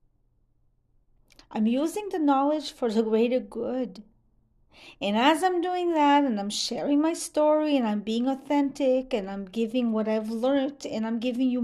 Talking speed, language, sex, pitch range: 165 wpm, English, female, 220-290 Hz